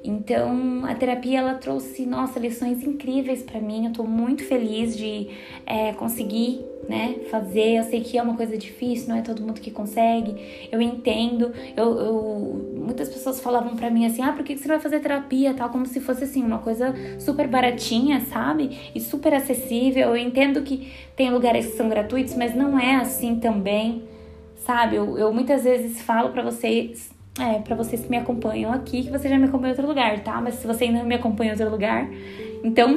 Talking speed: 200 wpm